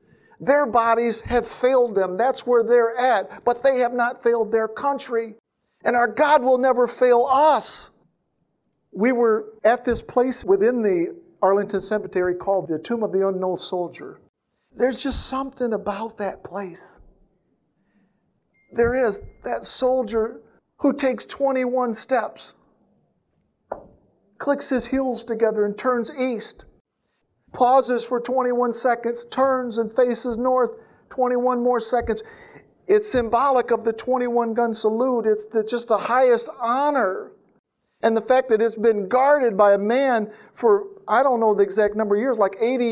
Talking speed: 145 wpm